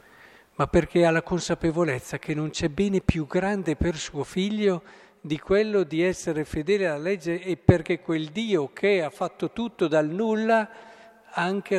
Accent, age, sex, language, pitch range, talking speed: native, 50-69, male, Italian, 140-185 Hz, 165 wpm